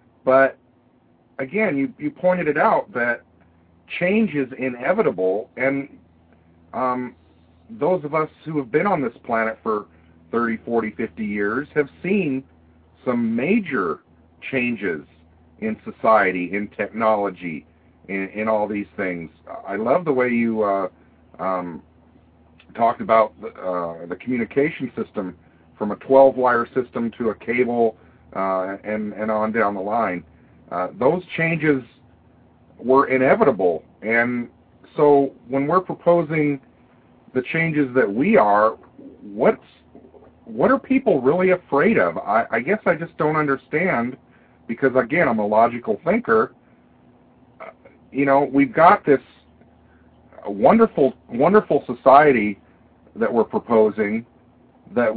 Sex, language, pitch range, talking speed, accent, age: male, English, 95-140 Hz, 125 wpm, American, 50-69